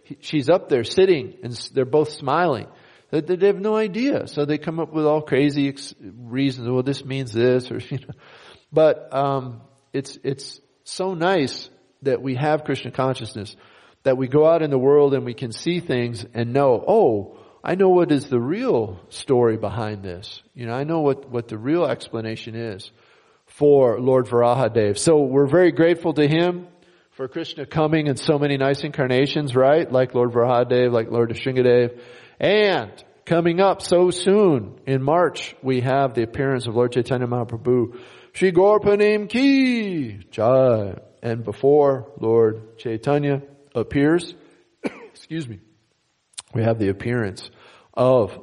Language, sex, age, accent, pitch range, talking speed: English, male, 40-59, American, 120-160 Hz, 155 wpm